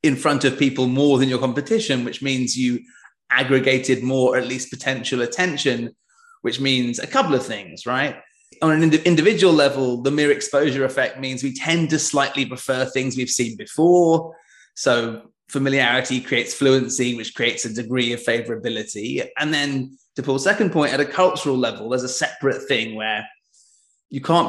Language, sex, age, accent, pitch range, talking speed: English, male, 20-39, British, 125-150 Hz, 175 wpm